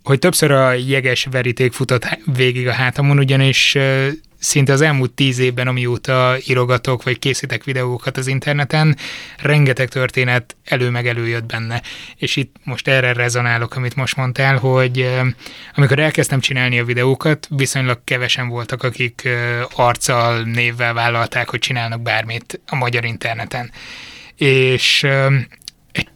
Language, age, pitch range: Hungarian, 20-39, 120-135 Hz